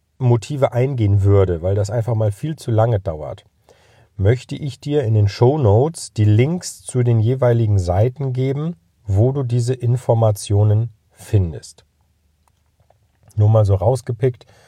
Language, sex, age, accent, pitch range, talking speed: German, male, 40-59, German, 105-130 Hz, 140 wpm